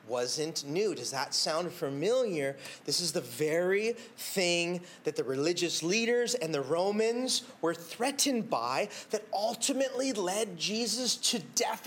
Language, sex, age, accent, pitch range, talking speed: English, male, 30-49, American, 180-260 Hz, 135 wpm